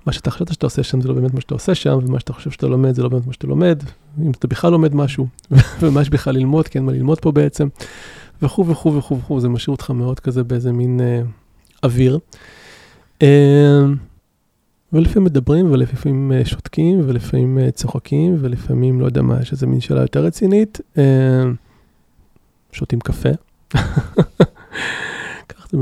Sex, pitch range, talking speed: male, 125-150 Hz, 170 wpm